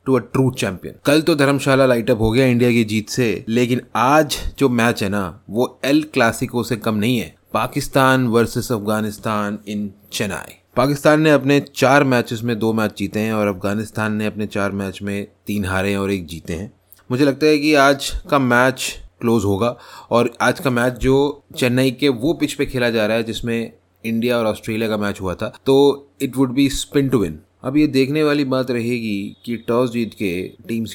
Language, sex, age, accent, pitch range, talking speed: Hindi, male, 20-39, native, 105-125 Hz, 205 wpm